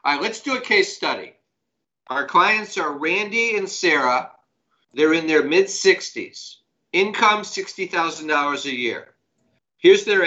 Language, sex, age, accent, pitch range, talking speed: English, male, 50-69, American, 145-185 Hz, 135 wpm